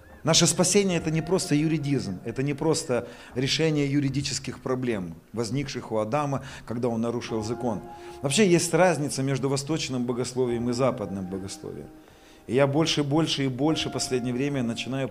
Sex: male